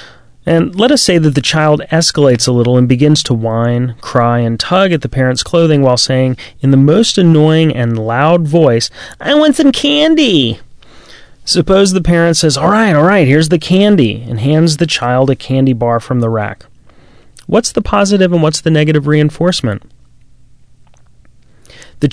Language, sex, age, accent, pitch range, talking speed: English, male, 30-49, American, 120-155 Hz, 170 wpm